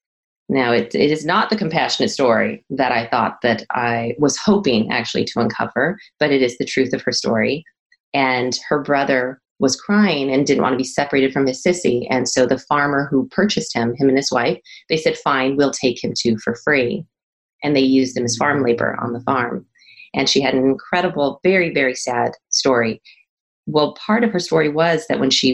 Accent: American